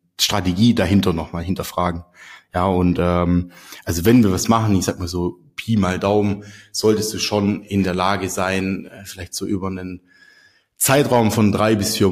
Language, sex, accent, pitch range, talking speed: German, male, German, 90-110 Hz, 180 wpm